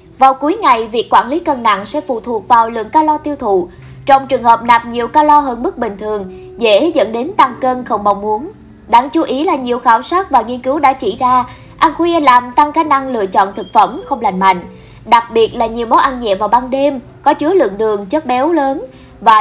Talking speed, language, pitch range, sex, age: 240 wpm, Vietnamese, 230-295 Hz, female, 20-39